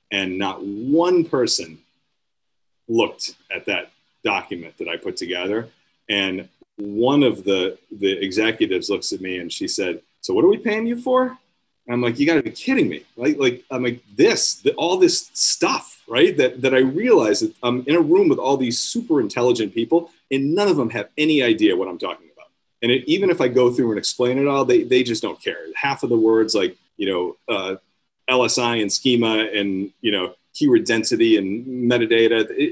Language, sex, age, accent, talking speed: English, male, 30-49, American, 200 wpm